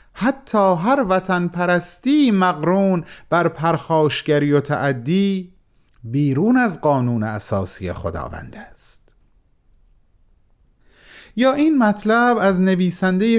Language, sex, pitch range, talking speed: Persian, male, 140-185 Hz, 90 wpm